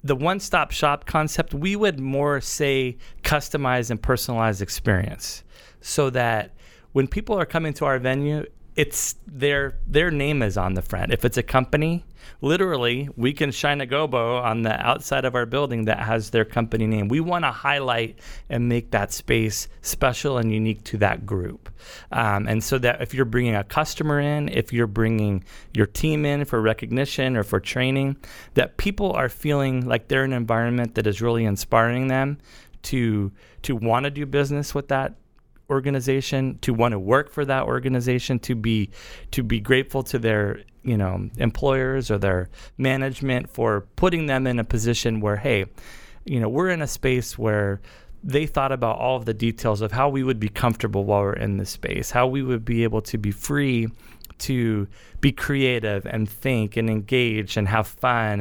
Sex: male